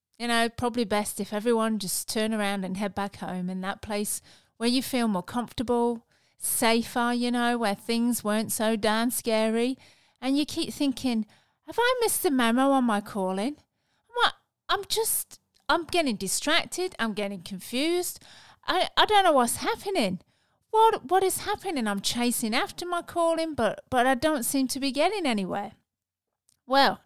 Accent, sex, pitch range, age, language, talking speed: British, female, 205-275 Hz, 30-49, English, 170 wpm